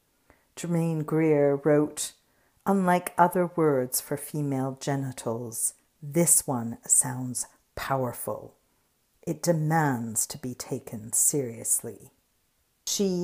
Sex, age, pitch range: female, 50-69, 130-170 Hz